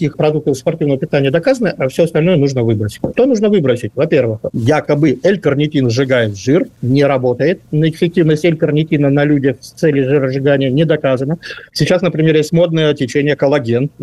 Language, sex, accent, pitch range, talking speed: Russian, male, native, 135-165 Hz, 145 wpm